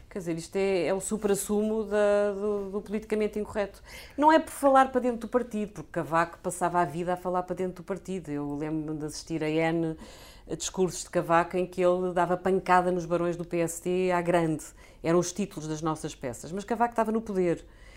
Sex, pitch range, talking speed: female, 165-205 Hz, 205 wpm